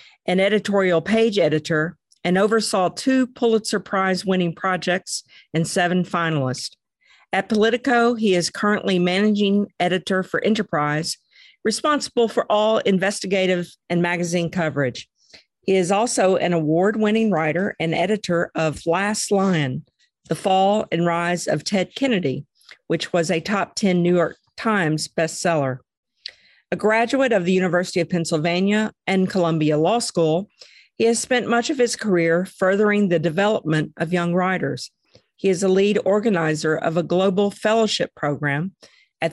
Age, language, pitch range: 50-69, English, 170-210 Hz